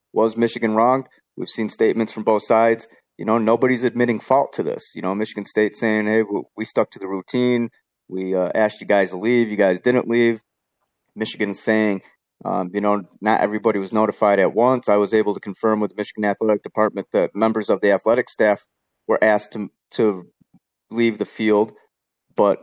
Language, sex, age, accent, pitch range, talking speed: English, male, 30-49, American, 105-130 Hz, 195 wpm